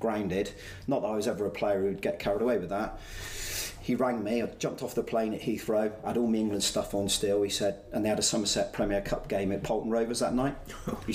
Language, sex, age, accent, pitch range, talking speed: English, male, 40-59, British, 100-125 Hz, 260 wpm